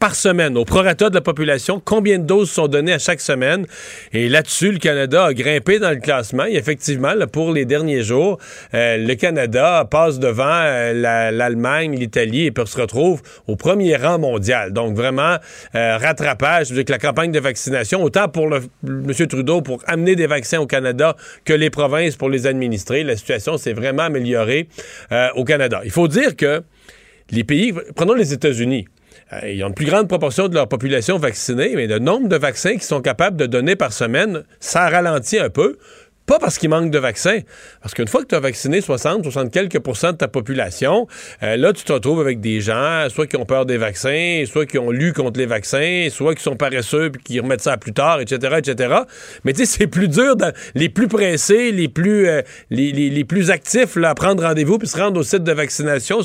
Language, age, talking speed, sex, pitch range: French, 40-59, 210 wpm, male, 135-180 Hz